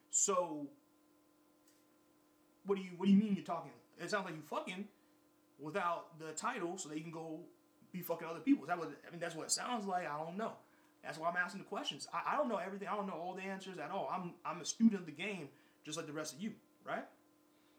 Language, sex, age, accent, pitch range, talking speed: English, male, 30-49, American, 155-235 Hz, 245 wpm